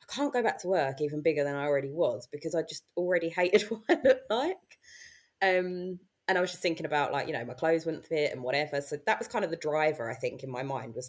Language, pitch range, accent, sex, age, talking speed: English, 140-175 Hz, British, female, 20-39, 265 wpm